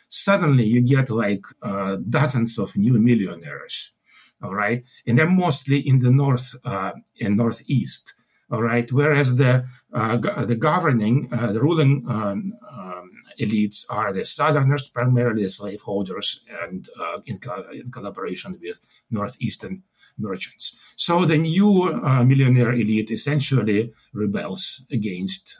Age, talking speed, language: 50-69, 135 wpm, English